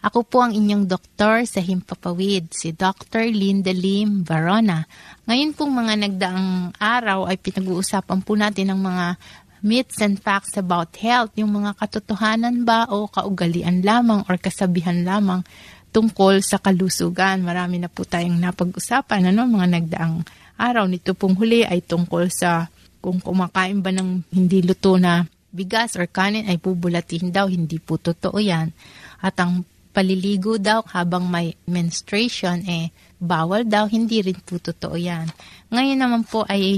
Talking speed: 150 wpm